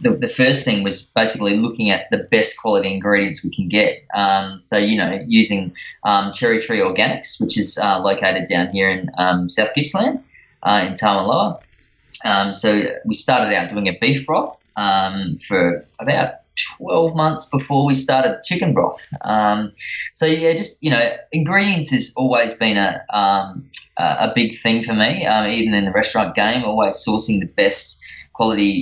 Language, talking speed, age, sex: English, 175 wpm, 20-39, male